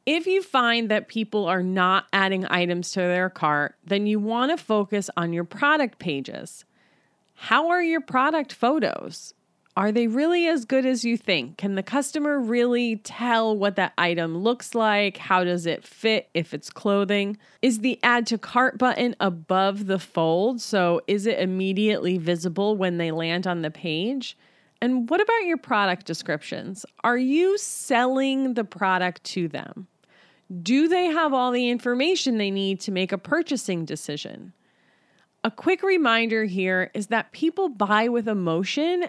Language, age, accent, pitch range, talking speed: English, 30-49, American, 185-245 Hz, 165 wpm